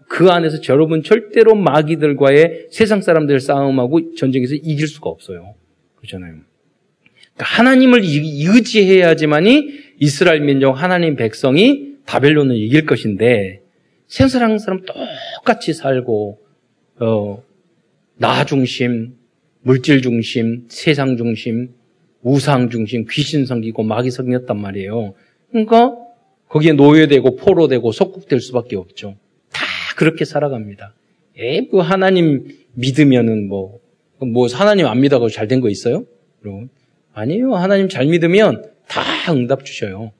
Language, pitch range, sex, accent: Korean, 115-185 Hz, male, native